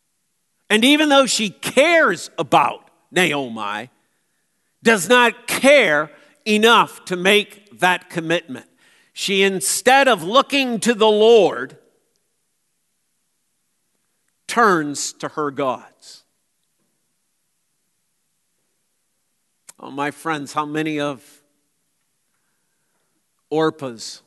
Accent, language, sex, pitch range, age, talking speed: American, English, male, 160-230 Hz, 50-69, 80 wpm